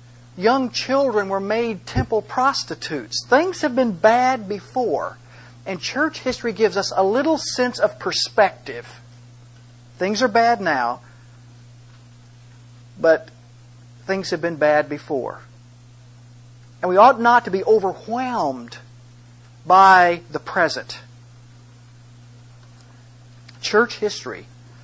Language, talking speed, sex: English, 105 wpm, male